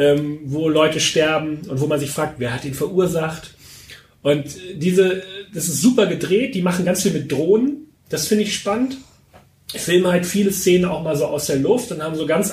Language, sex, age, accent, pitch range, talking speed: German, male, 30-49, German, 145-185 Hz, 210 wpm